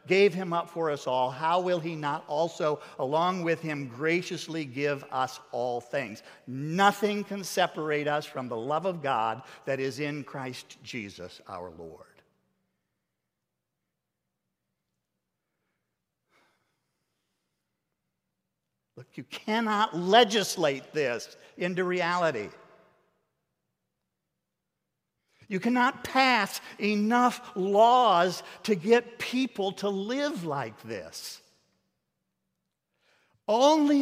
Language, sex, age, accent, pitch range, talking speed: English, male, 50-69, American, 150-210 Hz, 95 wpm